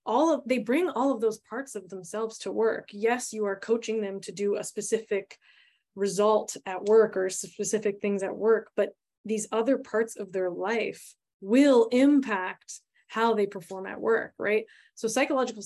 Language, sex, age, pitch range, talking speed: English, female, 20-39, 205-235 Hz, 175 wpm